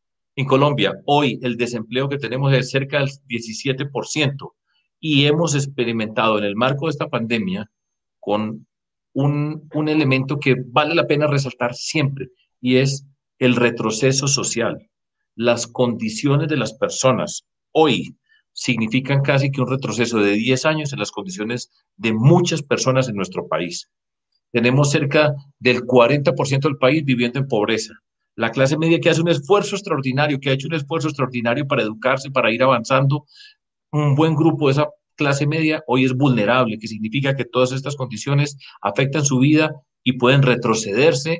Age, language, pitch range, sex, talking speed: 40-59, Spanish, 120-150 Hz, male, 155 wpm